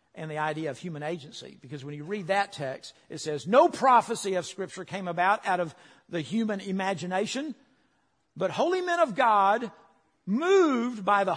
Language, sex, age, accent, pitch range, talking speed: English, male, 50-69, American, 150-230 Hz, 175 wpm